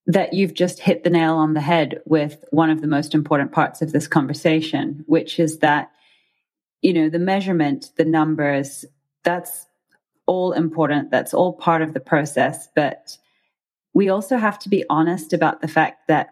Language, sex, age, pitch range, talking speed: English, female, 30-49, 150-170 Hz, 175 wpm